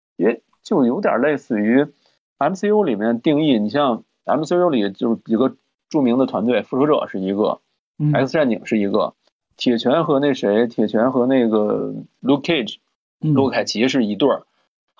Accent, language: native, Chinese